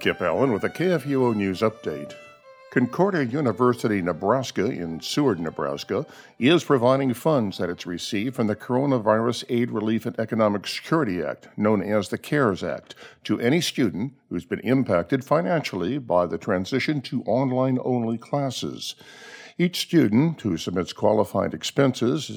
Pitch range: 105-135 Hz